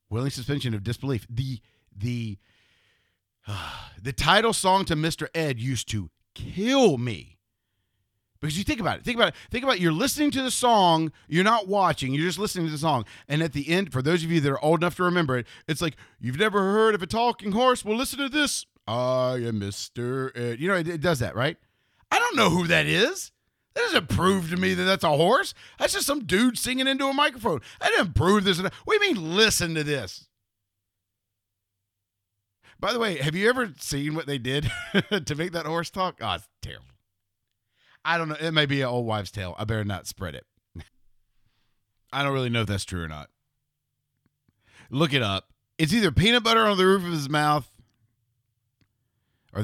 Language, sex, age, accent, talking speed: English, male, 40-59, American, 210 wpm